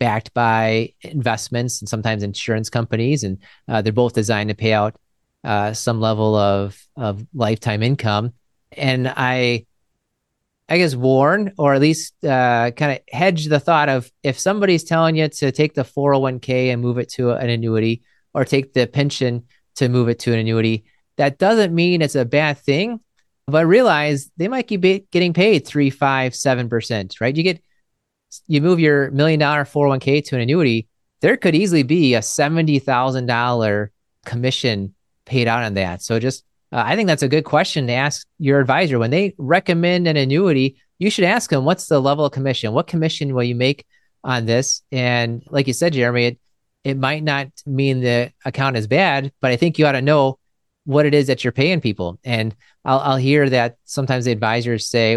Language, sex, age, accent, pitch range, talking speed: English, male, 30-49, American, 115-150 Hz, 190 wpm